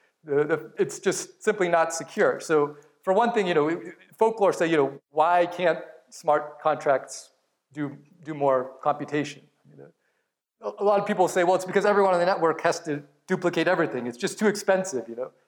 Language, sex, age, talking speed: English, male, 40-59, 180 wpm